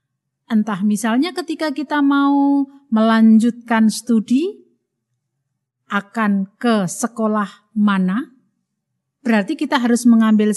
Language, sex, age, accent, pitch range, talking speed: Indonesian, female, 50-69, native, 210-285 Hz, 85 wpm